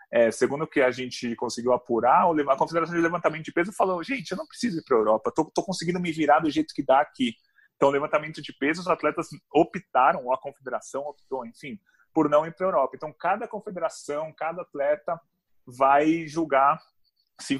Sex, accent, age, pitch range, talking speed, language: male, Brazilian, 30-49, 130-170 Hz, 195 wpm, Portuguese